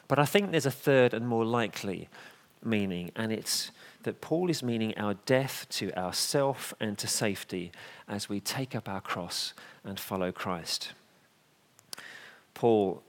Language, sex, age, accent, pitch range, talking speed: English, male, 40-59, British, 95-125 Hz, 150 wpm